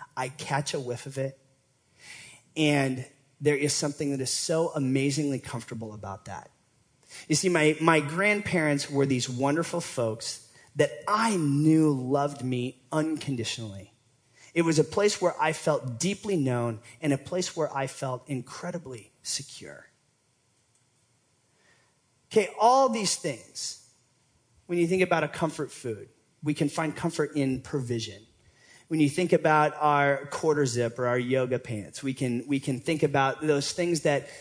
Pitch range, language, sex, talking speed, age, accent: 130-165 Hz, English, male, 150 wpm, 30-49, American